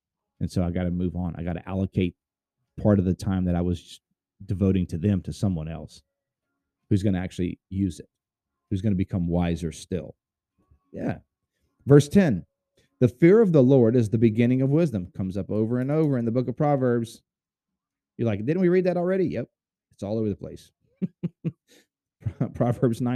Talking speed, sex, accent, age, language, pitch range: 180 wpm, male, American, 30-49, English, 95-130 Hz